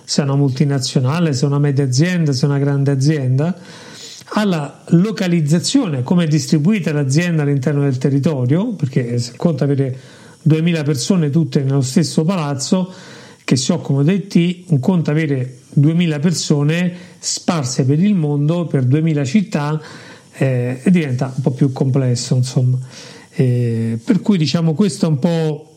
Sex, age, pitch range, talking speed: male, 50-69, 140-170 Hz, 155 wpm